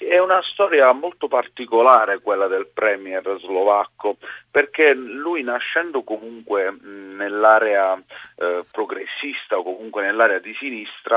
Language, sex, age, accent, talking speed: Italian, male, 40-59, native, 115 wpm